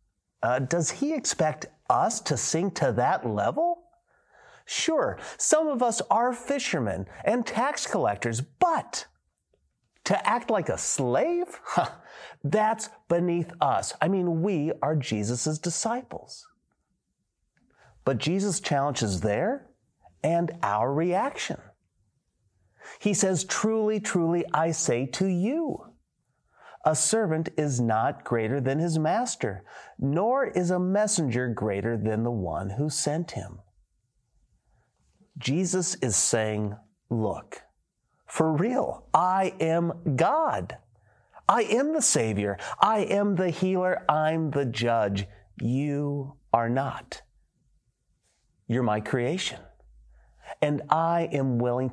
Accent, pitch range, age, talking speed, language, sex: American, 115-190 Hz, 40-59, 115 wpm, English, male